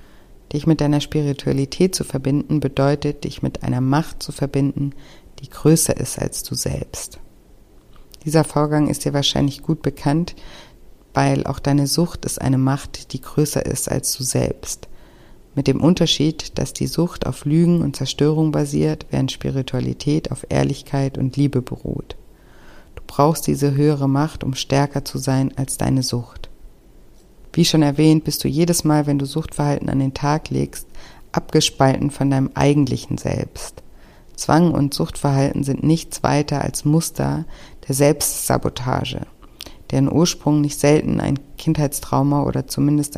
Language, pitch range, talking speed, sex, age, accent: German, 135-150 Hz, 145 wpm, female, 50-69, German